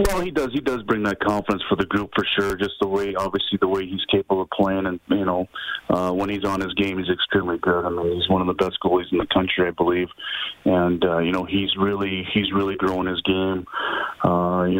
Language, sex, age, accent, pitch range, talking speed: English, male, 30-49, American, 90-100 Hz, 245 wpm